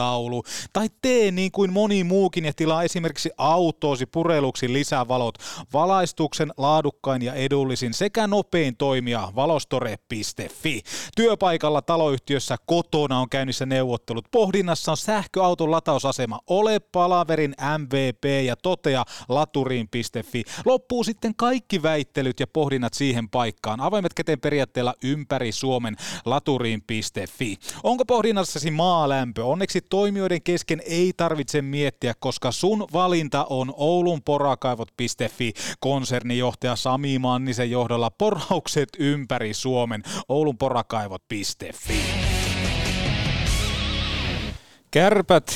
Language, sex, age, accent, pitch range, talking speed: Finnish, male, 30-49, native, 125-170 Hz, 100 wpm